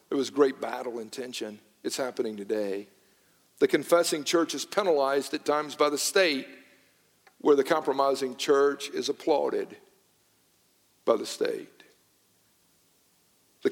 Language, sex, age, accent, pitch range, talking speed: English, male, 50-69, American, 130-170 Hz, 125 wpm